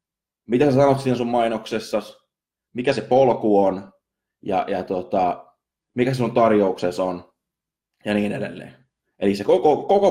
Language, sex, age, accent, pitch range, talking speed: Finnish, male, 20-39, native, 100-140 Hz, 150 wpm